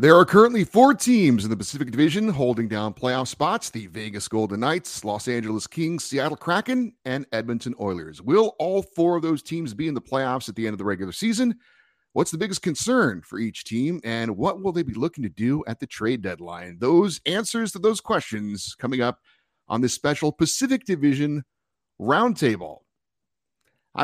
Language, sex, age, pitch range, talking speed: English, male, 30-49, 105-165 Hz, 185 wpm